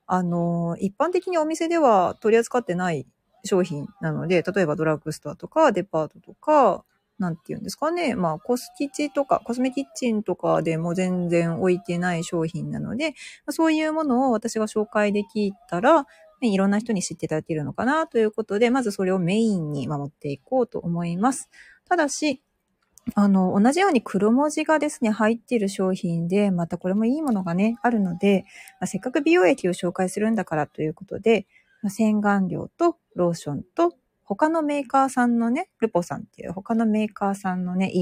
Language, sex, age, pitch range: Japanese, female, 40-59, 175-255 Hz